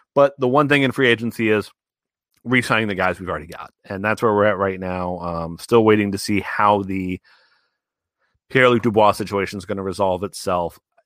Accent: American